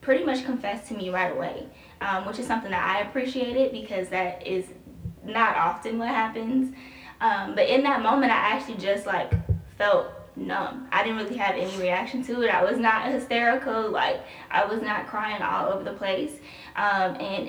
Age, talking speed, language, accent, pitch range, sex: 10-29, 190 wpm, English, American, 190-255 Hz, female